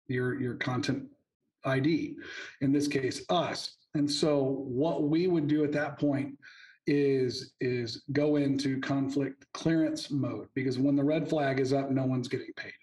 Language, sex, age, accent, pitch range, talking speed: English, male, 40-59, American, 135-155 Hz, 165 wpm